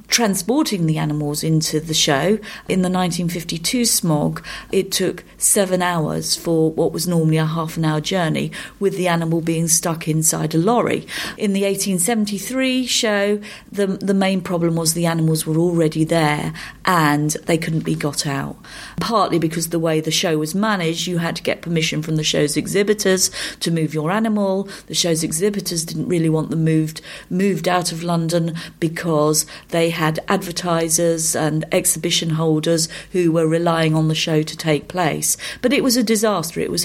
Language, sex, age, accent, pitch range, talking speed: English, female, 40-59, British, 165-205 Hz, 175 wpm